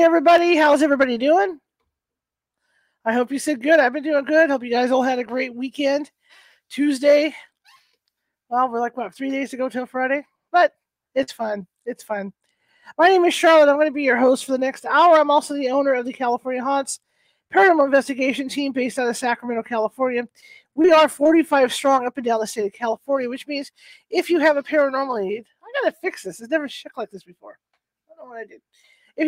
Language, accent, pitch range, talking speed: English, American, 240-300 Hz, 215 wpm